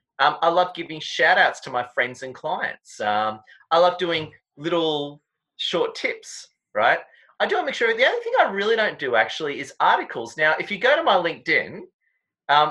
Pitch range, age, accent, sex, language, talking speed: 140-225 Hz, 30-49, Australian, male, English, 200 wpm